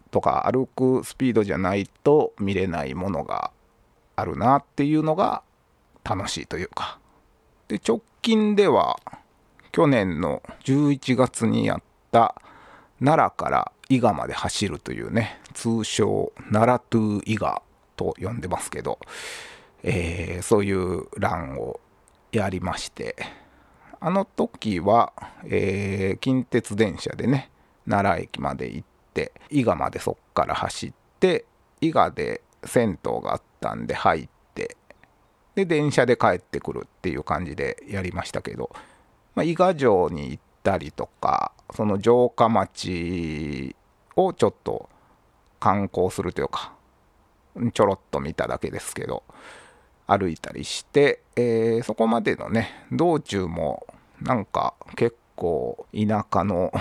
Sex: male